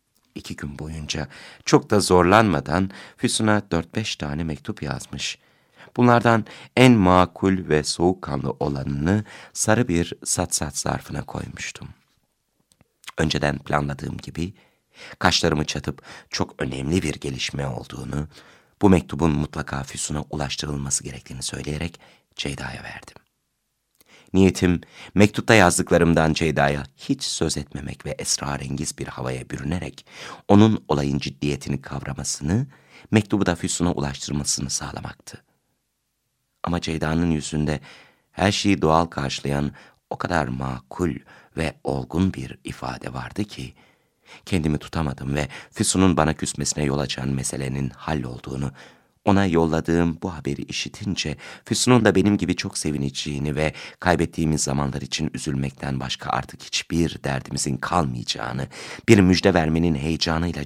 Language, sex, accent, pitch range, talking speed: Turkish, male, native, 70-90 Hz, 115 wpm